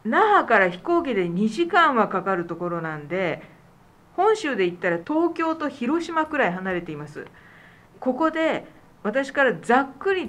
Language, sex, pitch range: Japanese, female, 175-280 Hz